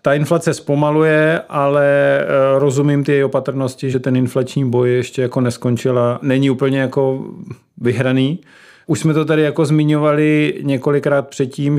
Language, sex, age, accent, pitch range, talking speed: Czech, male, 40-59, native, 135-150 Hz, 145 wpm